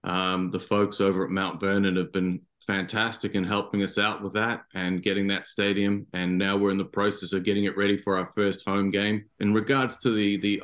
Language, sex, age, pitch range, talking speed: English, male, 40-59, 90-100 Hz, 225 wpm